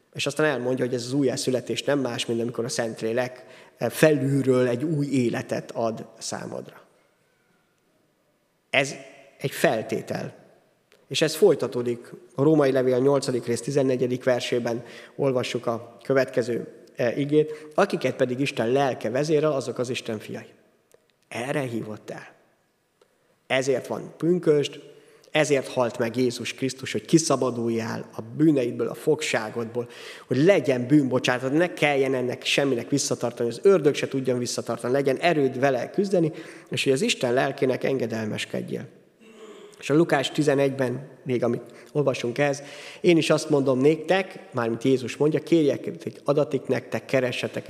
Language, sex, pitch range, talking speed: Hungarian, male, 125-150 Hz, 135 wpm